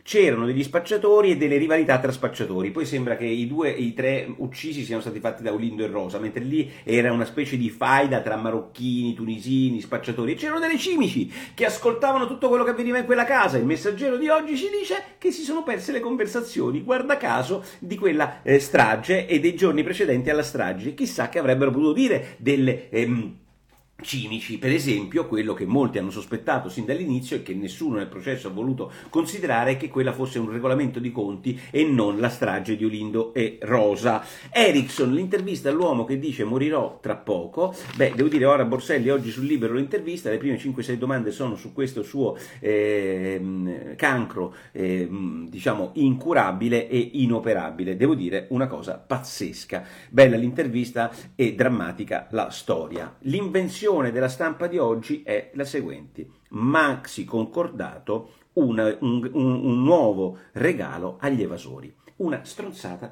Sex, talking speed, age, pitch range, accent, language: male, 165 wpm, 50-69, 115-170 Hz, native, Italian